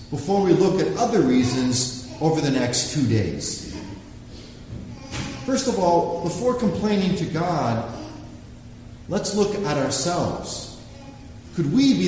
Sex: male